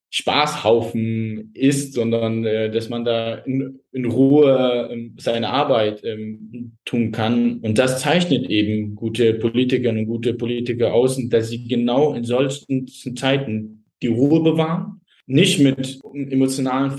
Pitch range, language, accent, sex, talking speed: 115-135 Hz, German, German, male, 125 wpm